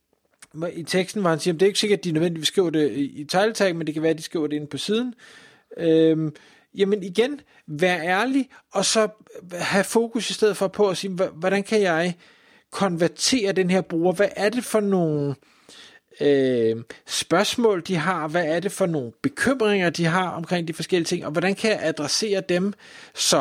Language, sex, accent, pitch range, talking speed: Danish, male, native, 150-195 Hz, 200 wpm